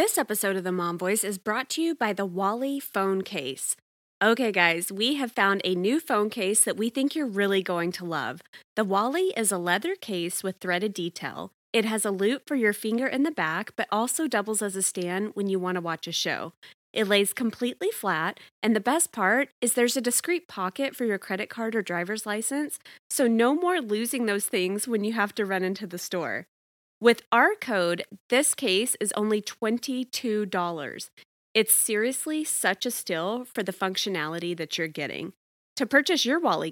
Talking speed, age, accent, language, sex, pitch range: 200 wpm, 20-39, American, English, female, 190-250 Hz